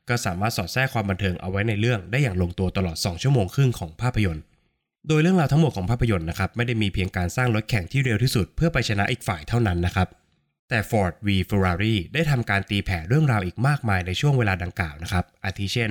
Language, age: Thai, 20-39